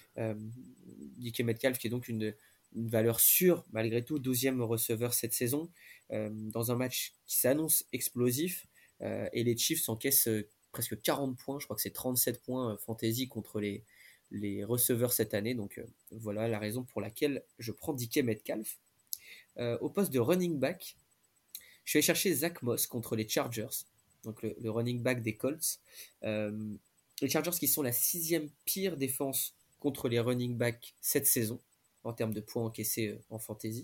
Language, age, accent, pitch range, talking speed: French, 20-39, French, 110-145 Hz, 180 wpm